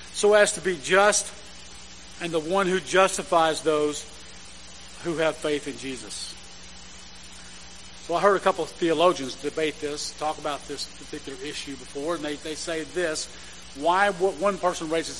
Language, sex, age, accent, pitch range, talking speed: English, male, 40-59, American, 130-190 Hz, 160 wpm